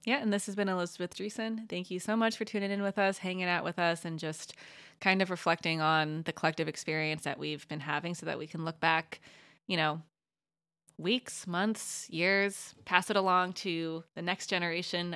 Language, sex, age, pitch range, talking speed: English, female, 20-39, 155-190 Hz, 200 wpm